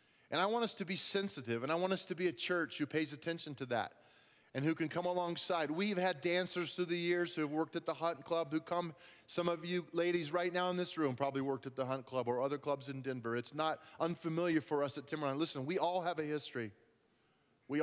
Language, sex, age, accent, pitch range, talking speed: English, male, 30-49, American, 140-170 Hz, 250 wpm